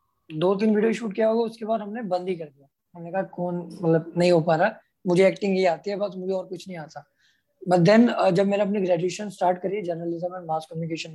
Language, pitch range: Hindi, 170-205 Hz